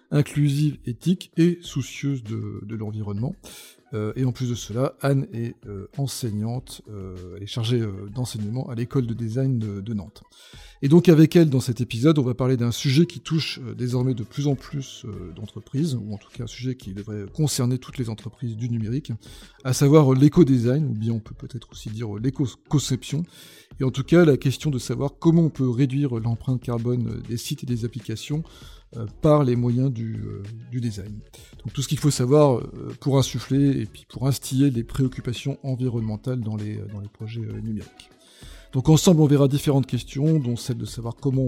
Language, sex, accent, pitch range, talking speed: French, male, French, 115-140 Hz, 200 wpm